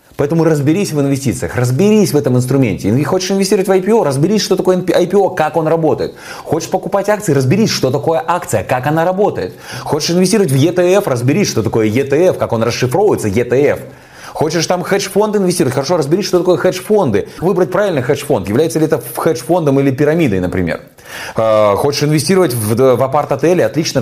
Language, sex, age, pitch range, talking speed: Russian, male, 20-39, 125-175 Hz, 165 wpm